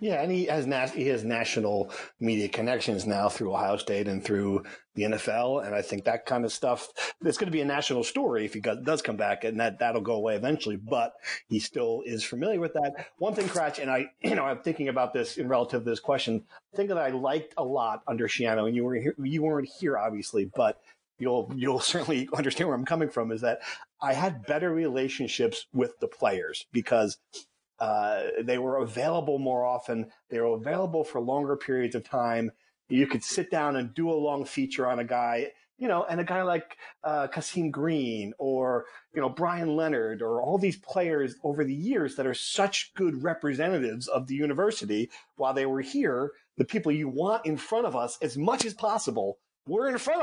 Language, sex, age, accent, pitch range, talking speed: English, male, 40-59, American, 125-180 Hz, 210 wpm